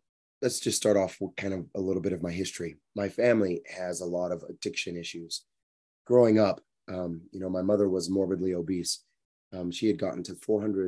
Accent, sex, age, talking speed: American, male, 30-49, 205 wpm